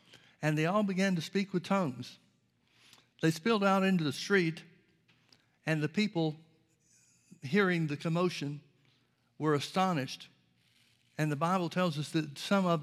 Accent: American